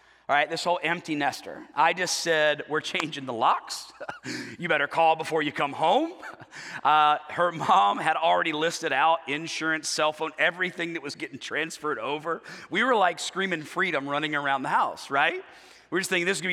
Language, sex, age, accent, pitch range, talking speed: English, male, 40-59, American, 145-175 Hz, 190 wpm